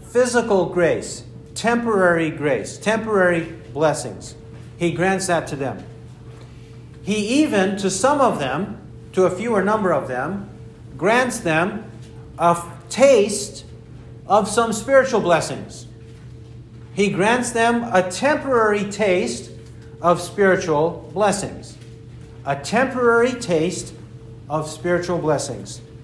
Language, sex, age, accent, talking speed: English, male, 50-69, American, 105 wpm